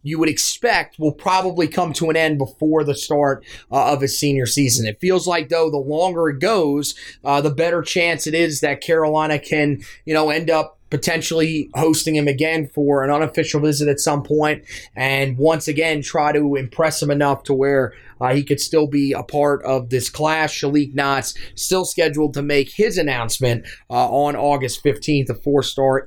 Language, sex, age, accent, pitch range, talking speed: English, male, 30-49, American, 140-165 Hz, 190 wpm